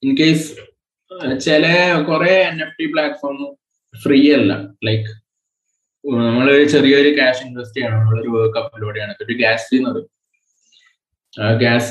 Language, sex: Malayalam, male